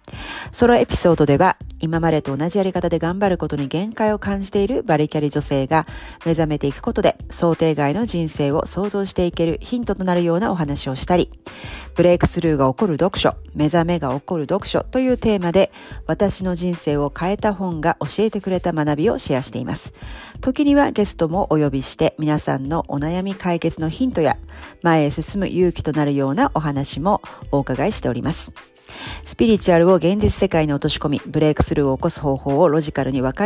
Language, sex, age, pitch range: Japanese, female, 40-59, 145-195 Hz